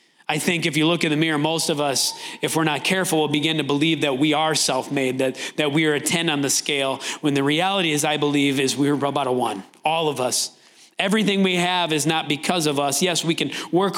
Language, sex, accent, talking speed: English, male, American, 250 wpm